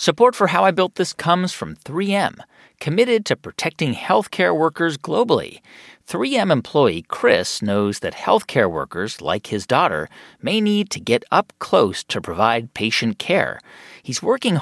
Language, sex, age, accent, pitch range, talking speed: English, male, 40-59, American, 120-185 Hz, 150 wpm